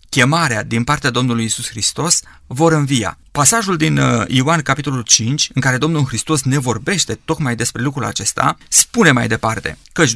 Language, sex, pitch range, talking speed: Romanian, male, 120-155 Hz, 160 wpm